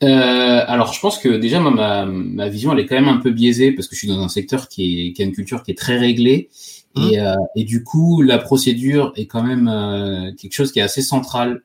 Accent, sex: French, male